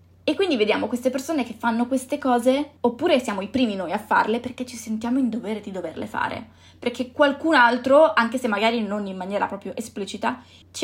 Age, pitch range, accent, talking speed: 20-39, 210-250 Hz, native, 200 wpm